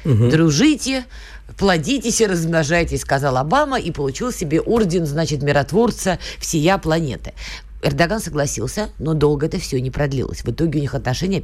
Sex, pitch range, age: female, 125-175 Hz, 20-39